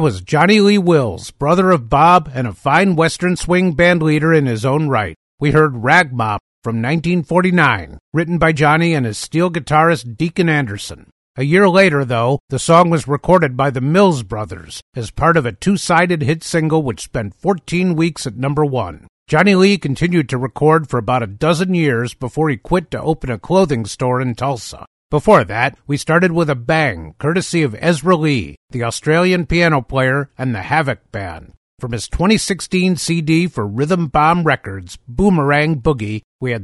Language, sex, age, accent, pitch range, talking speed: English, male, 50-69, American, 125-170 Hz, 175 wpm